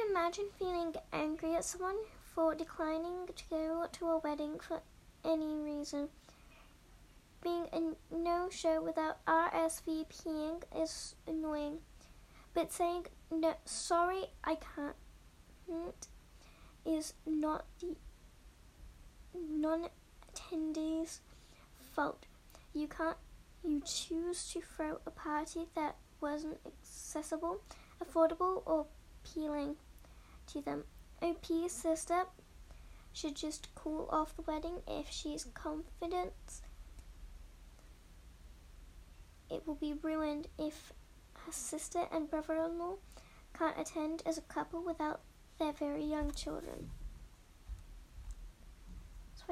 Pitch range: 295-335 Hz